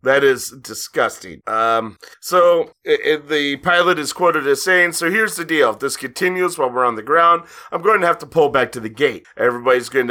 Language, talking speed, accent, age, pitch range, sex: English, 225 wpm, American, 30-49, 125-170 Hz, male